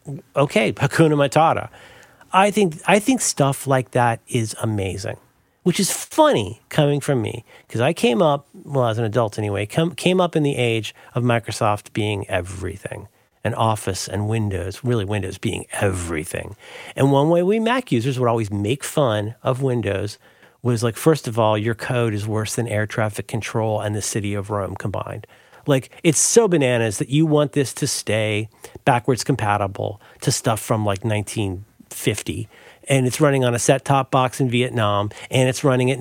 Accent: American